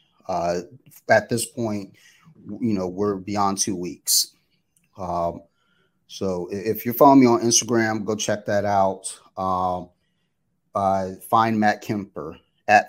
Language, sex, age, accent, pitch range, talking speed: English, male, 30-49, American, 95-110 Hz, 130 wpm